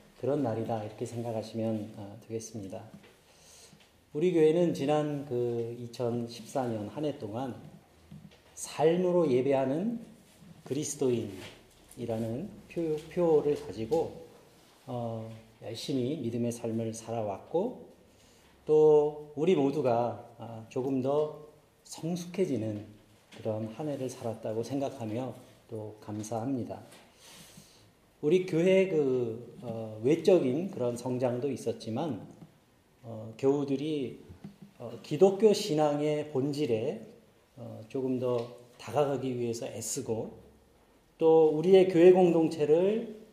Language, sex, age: Korean, male, 40-59